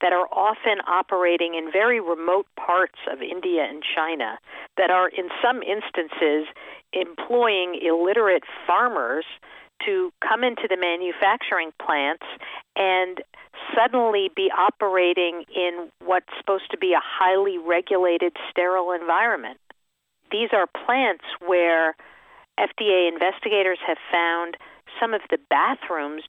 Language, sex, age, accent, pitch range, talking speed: English, female, 50-69, American, 165-205 Hz, 120 wpm